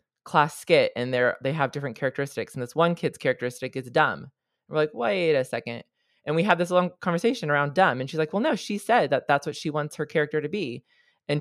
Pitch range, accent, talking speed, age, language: 135-170 Hz, American, 235 wpm, 20-39, English